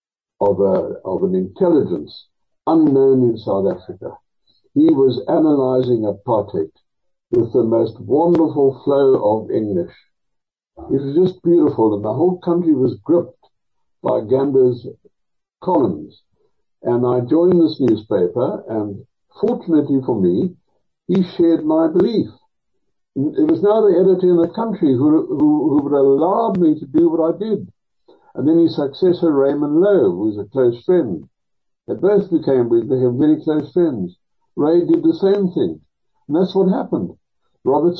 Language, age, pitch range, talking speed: English, 60-79, 135-205 Hz, 150 wpm